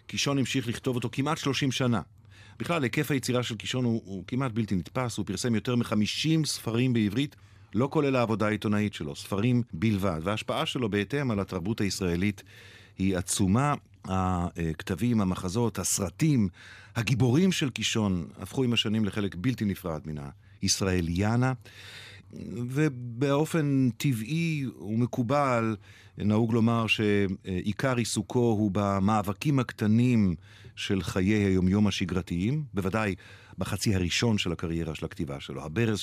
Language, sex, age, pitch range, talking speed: Hebrew, male, 50-69, 95-125 Hz, 125 wpm